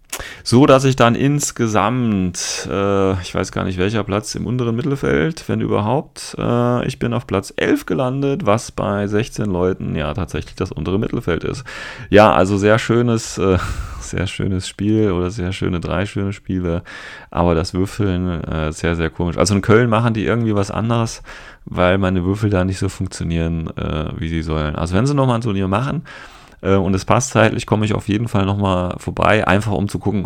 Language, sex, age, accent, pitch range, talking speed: German, male, 30-49, German, 85-105 Hz, 190 wpm